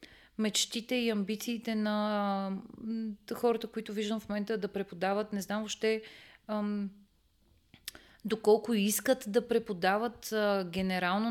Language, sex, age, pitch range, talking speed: Bulgarian, female, 30-49, 195-225 Hz, 110 wpm